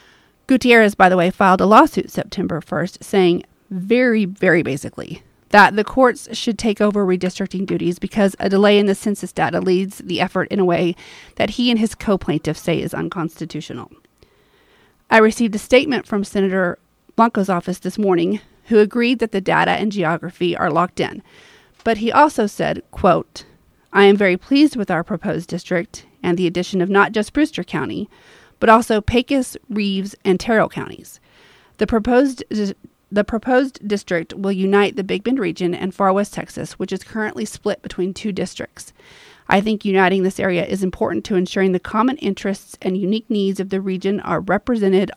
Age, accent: 30-49, American